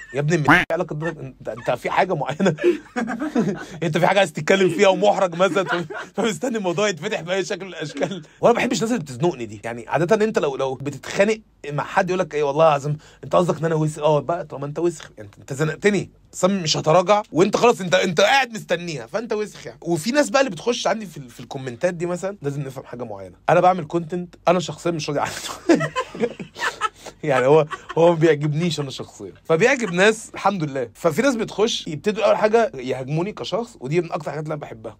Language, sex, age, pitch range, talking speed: Arabic, male, 30-49, 150-200 Hz, 215 wpm